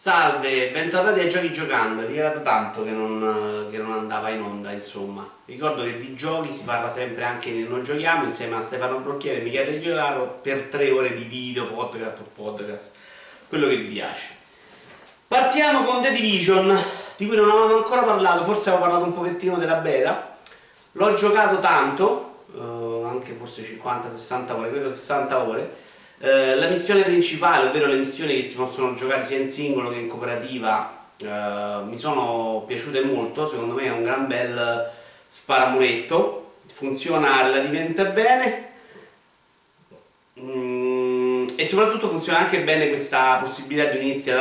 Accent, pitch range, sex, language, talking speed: native, 120-160 Hz, male, Italian, 155 wpm